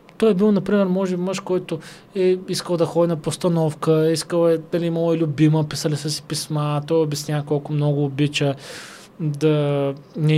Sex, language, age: male, Bulgarian, 20-39